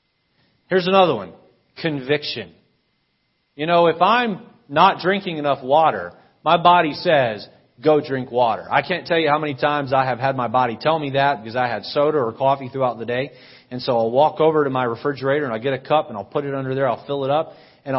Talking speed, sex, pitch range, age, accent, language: 220 wpm, male, 135-190 Hz, 40-59, American, English